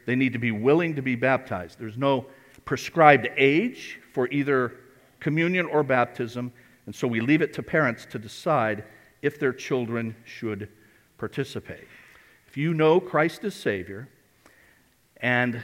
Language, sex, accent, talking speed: English, male, American, 145 wpm